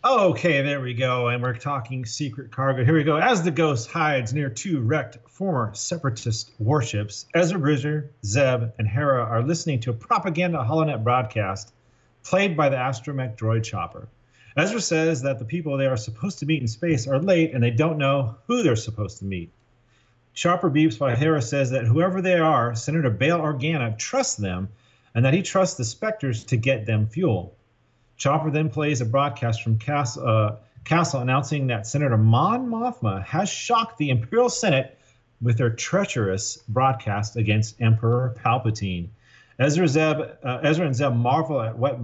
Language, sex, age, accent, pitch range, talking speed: English, male, 40-59, American, 115-155 Hz, 175 wpm